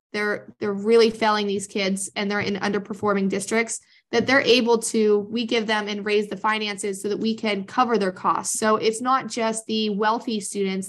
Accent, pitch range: American, 200-220 Hz